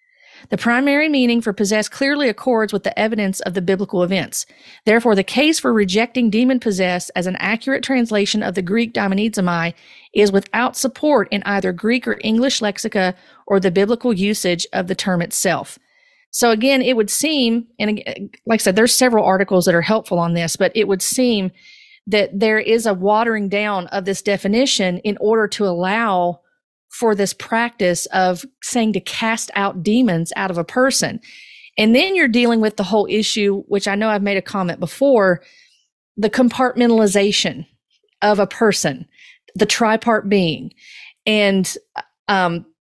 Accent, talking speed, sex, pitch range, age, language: American, 165 wpm, female, 195-240 Hz, 40-59, English